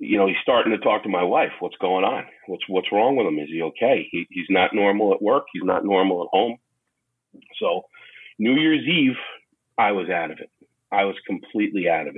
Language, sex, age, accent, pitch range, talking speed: English, male, 40-59, American, 100-155 Hz, 220 wpm